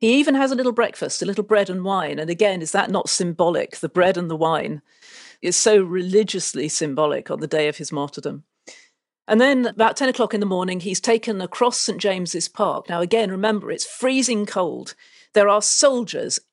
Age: 40-59